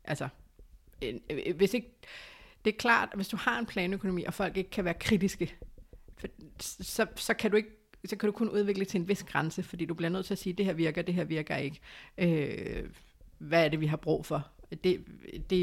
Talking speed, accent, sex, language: 215 wpm, native, female, Danish